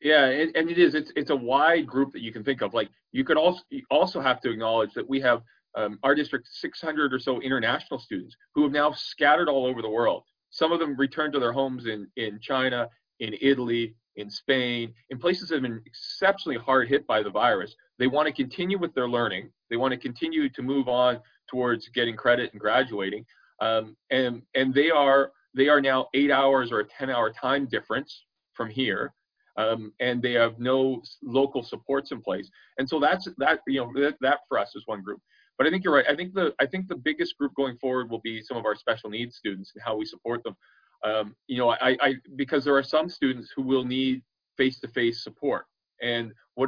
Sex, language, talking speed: male, English, 220 wpm